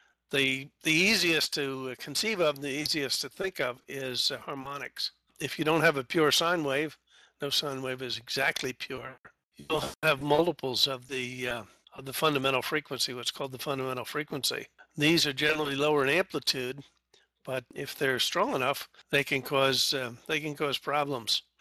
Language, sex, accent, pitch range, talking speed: English, male, American, 130-155 Hz, 170 wpm